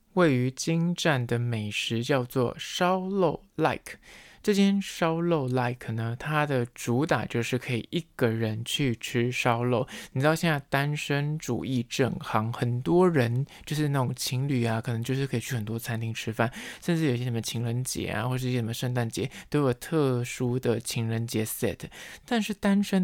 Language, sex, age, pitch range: Chinese, male, 20-39, 115-155 Hz